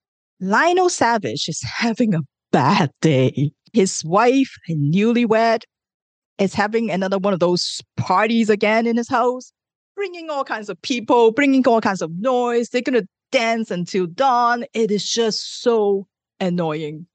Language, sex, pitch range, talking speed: English, female, 170-235 Hz, 150 wpm